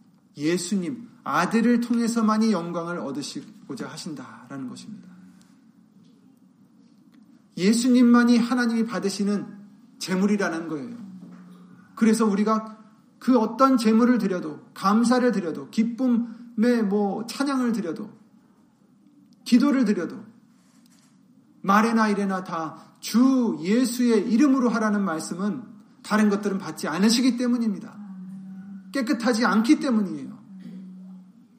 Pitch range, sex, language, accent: 195-235 Hz, male, Korean, native